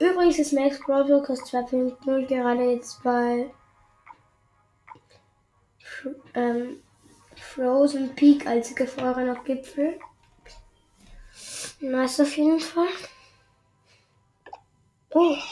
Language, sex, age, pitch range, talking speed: German, female, 10-29, 235-275 Hz, 80 wpm